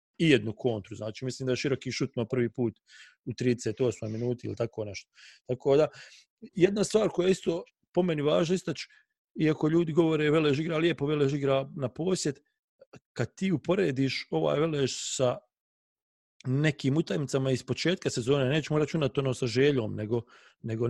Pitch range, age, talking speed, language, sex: 125-160 Hz, 40-59, 155 wpm, English, male